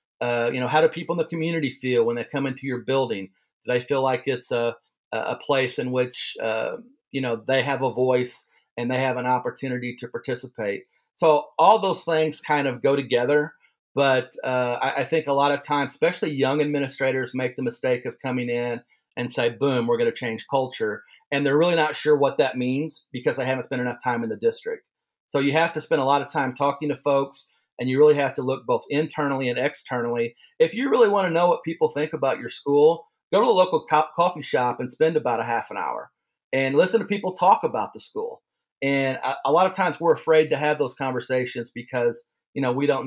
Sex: male